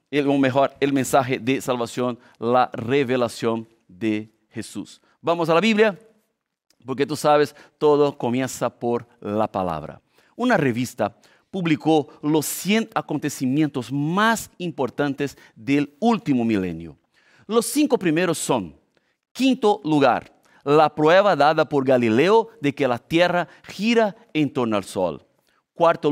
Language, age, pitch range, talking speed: Spanish, 50-69, 130-185 Hz, 125 wpm